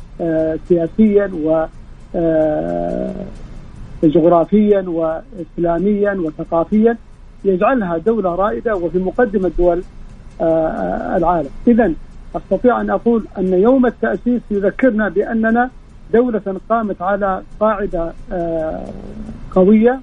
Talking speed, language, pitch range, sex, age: 80 wpm, Arabic, 175-225 Hz, male, 50-69